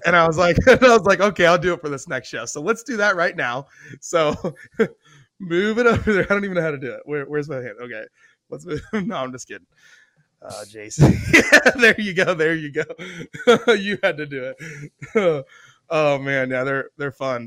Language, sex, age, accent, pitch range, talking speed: English, male, 20-39, American, 140-175 Hz, 215 wpm